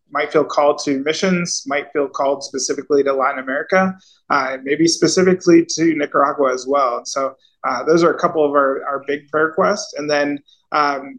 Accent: American